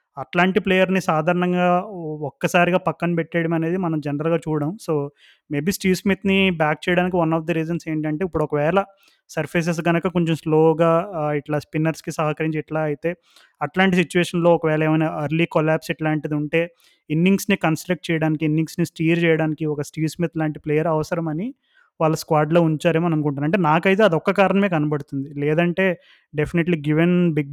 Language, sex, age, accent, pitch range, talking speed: Telugu, male, 20-39, native, 155-180 Hz, 140 wpm